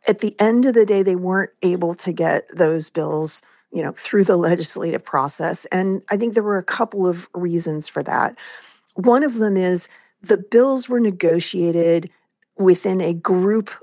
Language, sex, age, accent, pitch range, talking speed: English, female, 40-59, American, 165-205 Hz, 180 wpm